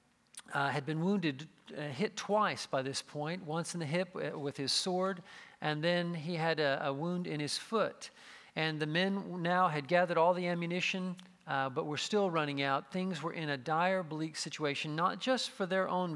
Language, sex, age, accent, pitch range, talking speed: English, male, 50-69, American, 150-185 Hz, 200 wpm